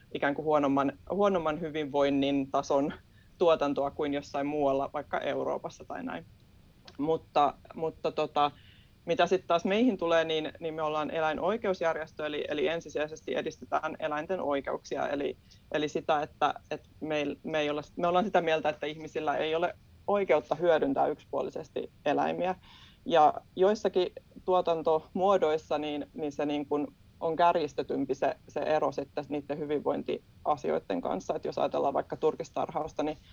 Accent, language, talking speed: native, Finnish, 135 wpm